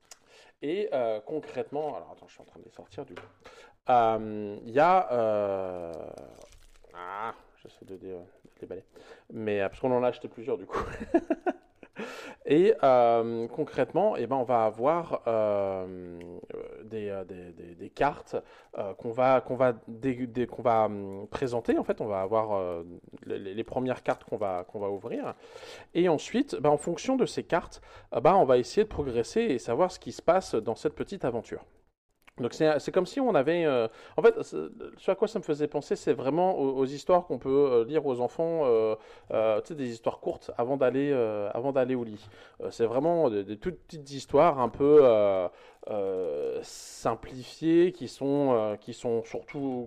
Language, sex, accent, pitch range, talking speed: French, male, French, 105-170 Hz, 175 wpm